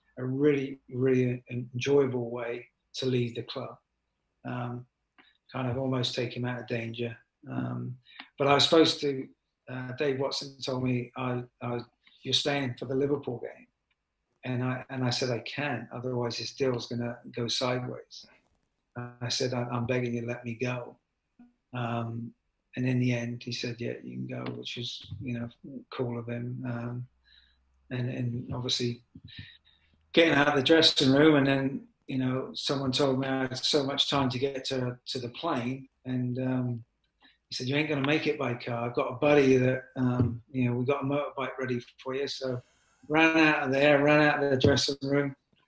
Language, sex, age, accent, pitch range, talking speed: English, male, 50-69, British, 120-140 Hz, 190 wpm